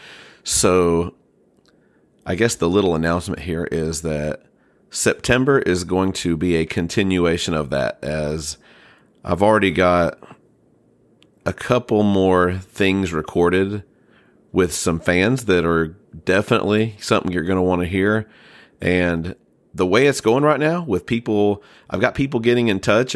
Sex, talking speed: male, 145 wpm